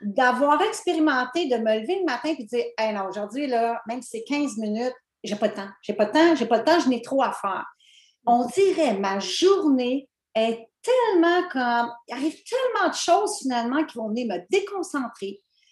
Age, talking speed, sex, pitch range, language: 40-59, 210 wpm, female, 225-320 Hz, French